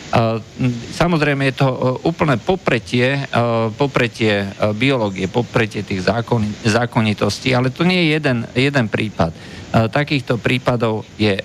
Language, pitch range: Slovak, 110-140 Hz